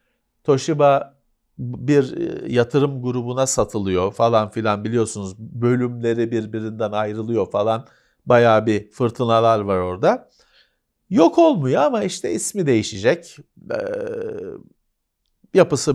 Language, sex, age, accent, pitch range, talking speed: Turkish, male, 50-69, native, 120-190 Hz, 90 wpm